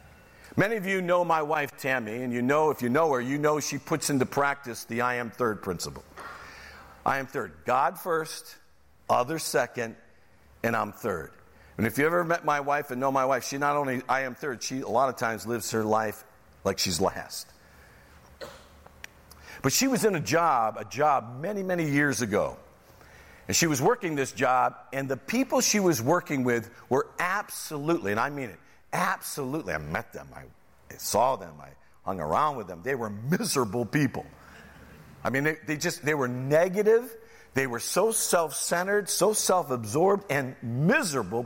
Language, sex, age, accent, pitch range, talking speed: English, male, 50-69, American, 110-165 Hz, 185 wpm